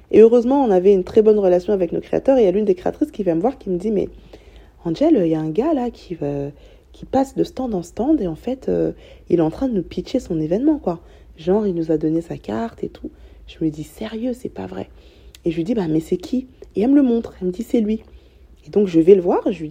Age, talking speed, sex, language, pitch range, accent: 20-39, 320 wpm, female, French, 165-215 Hz, French